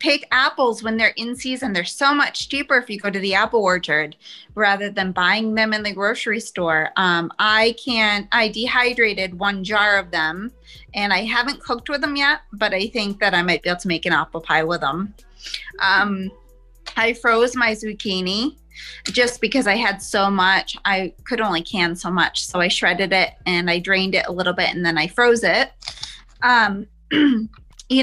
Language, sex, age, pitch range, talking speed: English, female, 20-39, 190-245 Hz, 195 wpm